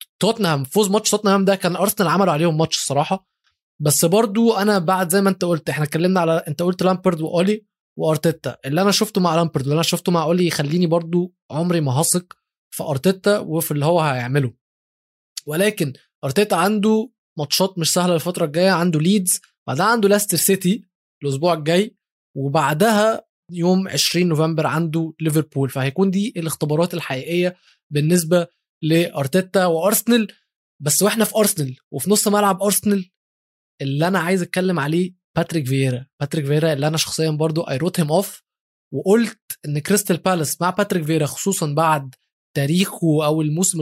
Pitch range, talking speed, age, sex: 155-195 Hz, 150 wpm, 20-39, male